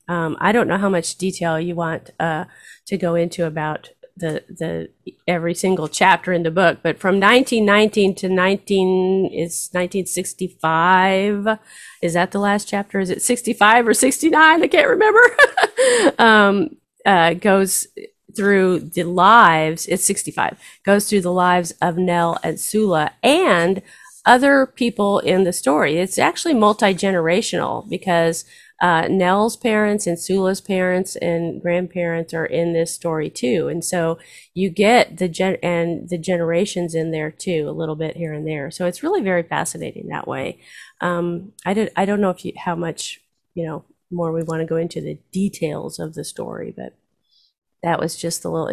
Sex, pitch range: female, 170-200 Hz